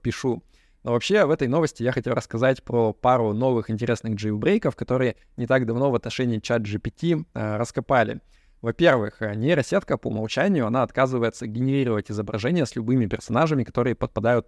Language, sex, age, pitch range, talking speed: Russian, male, 20-39, 110-135 Hz, 155 wpm